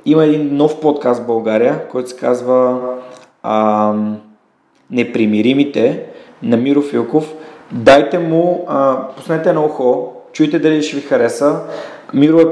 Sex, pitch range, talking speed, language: male, 130-155 Hz, 130 wpm, Bulgarian